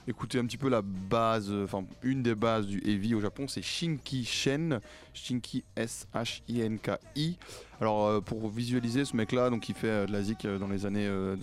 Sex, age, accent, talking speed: male, 20-39, French, 185 wpm